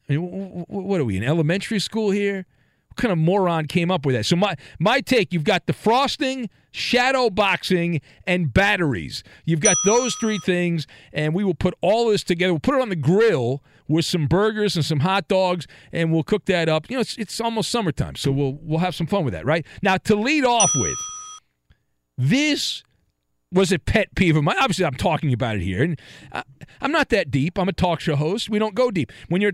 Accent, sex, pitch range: American, male, 145-205 Hz